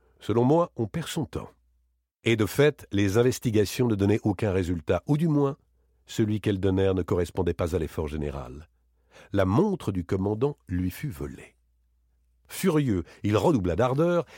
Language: French